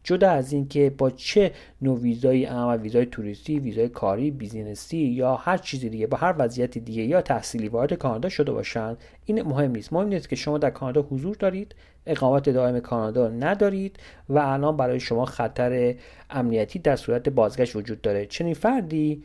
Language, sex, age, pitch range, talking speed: Persian, male, 40-59, 115-150 Hz, 175 wpm